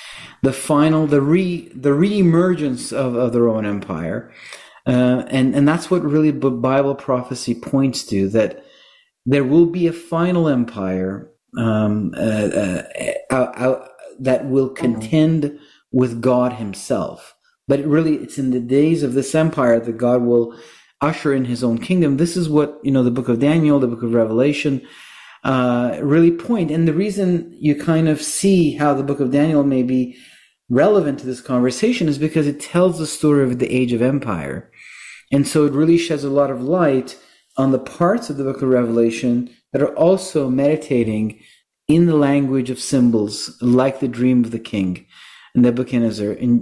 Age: 40-59